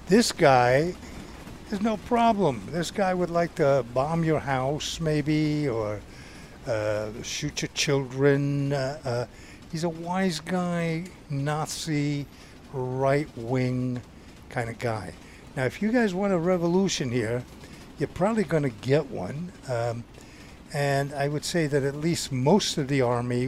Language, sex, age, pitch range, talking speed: English, male, 60-79, 115-155 Hz, 145 wpm